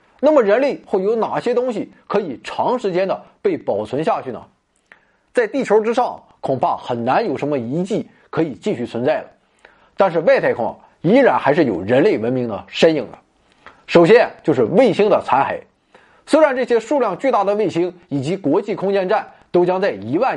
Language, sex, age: Chinese, male, 20-39